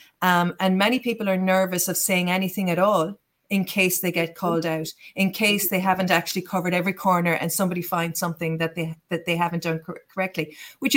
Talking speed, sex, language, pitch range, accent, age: 205 wpm, female, English, 170-195 Hz, Irish, 40-59